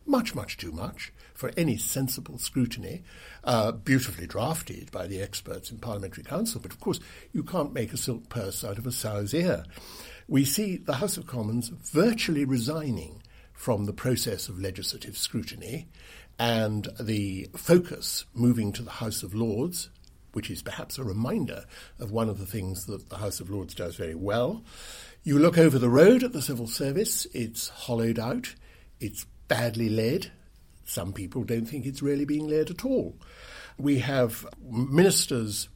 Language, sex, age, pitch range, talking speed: English, male, 60-79, 105-135 Hz, 170 wpm